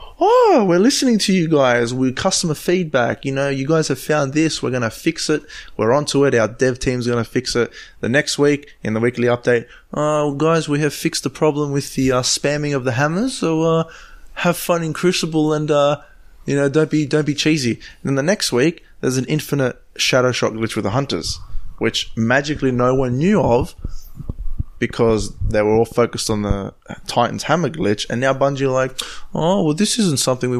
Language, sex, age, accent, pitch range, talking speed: English, male, 20-39, Australian, 115-150 Hz, 215 wpm